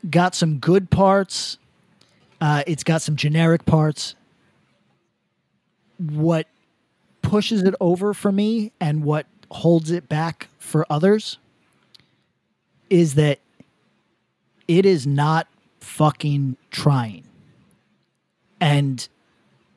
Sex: male